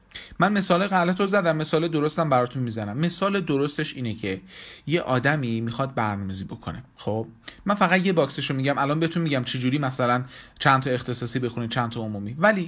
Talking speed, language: 185 wpm, Persian